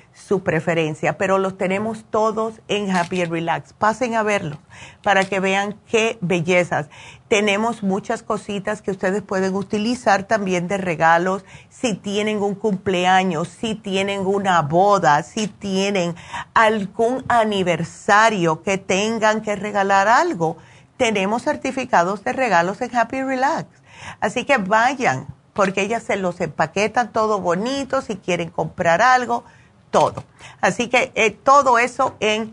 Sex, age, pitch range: female, 50-69, 180-225 Hz